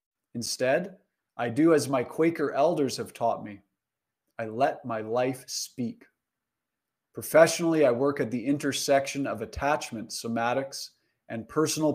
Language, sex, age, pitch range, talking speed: English, male, 30-49, 120-155 Hz, 130 wpm